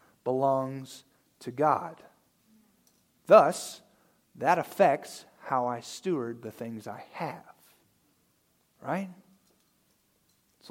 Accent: American